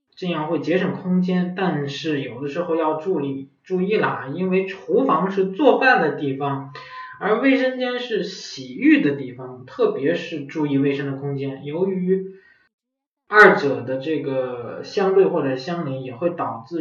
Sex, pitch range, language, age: male, 135-180 Hz, Chinese, 20-39